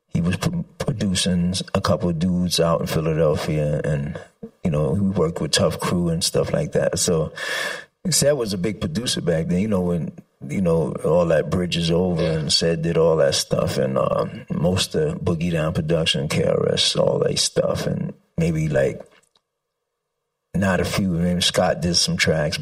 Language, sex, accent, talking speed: English, male, American, 180 wpm